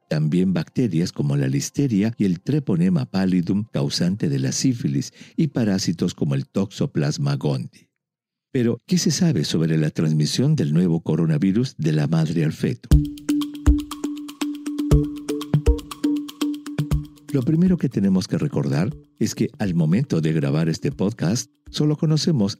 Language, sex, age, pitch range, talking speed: English, male, 50-69, 100-165 Hz, 135 wpm